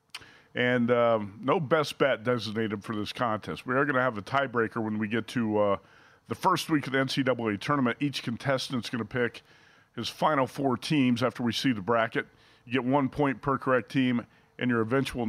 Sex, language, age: male, English, 40-59